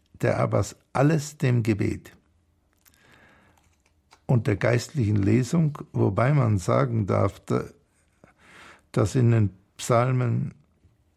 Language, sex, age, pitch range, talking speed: German, male, 60-79, 90-115 Hz, 90 wpm